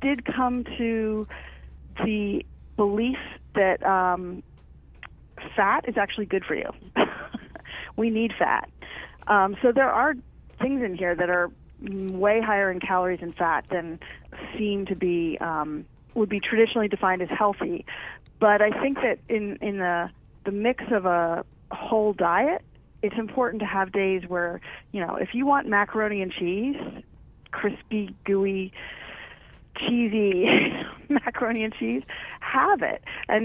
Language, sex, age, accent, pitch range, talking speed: English, female, 30-49, American, 180-235 Hz, 140 wpm